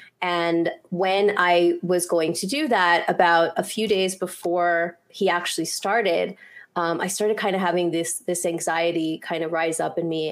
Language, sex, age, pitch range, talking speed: English, female, 20-39, 170-205 Hz, 180 wpm